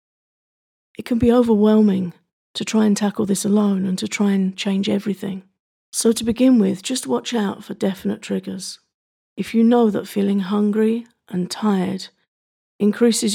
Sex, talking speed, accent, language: female, 155 wpm, British, English